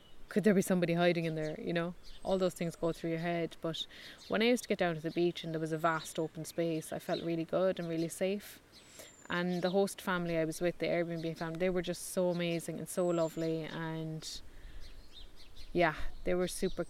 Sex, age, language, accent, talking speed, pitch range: female, 20-39, English, Irish, 225 wpm, 165-195 Hz